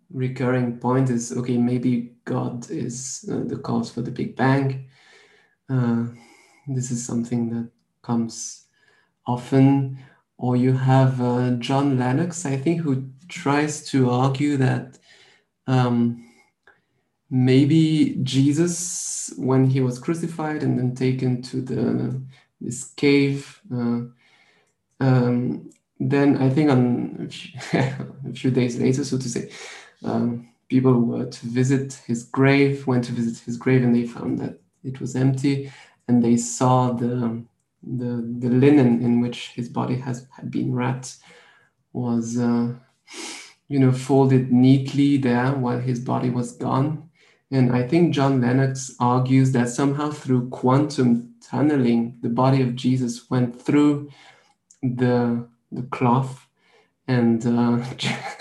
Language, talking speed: English, 135 wpm